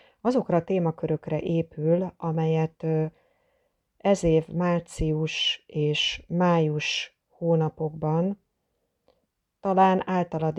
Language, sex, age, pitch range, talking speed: Hungarian, female, 30-49, 145-165 Hz, 75 wpm